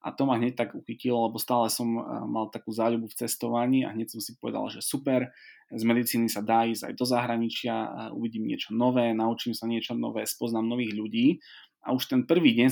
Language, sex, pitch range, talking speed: Slovak, male, 110-125 Hz, 210 wpm